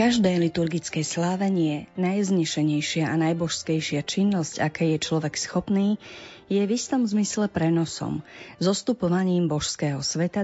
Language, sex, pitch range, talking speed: Slovak, female, 160-195 Hz, 110 wpm